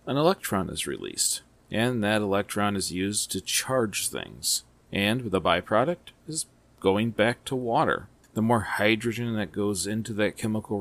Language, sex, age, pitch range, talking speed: English, male, 40-59, 100-125 Hz, 155 wpm